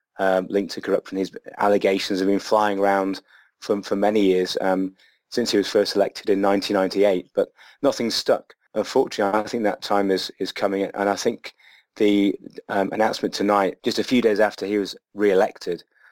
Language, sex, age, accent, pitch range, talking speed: English, male, 30-49, British, 95-100 Hz, 180 wpm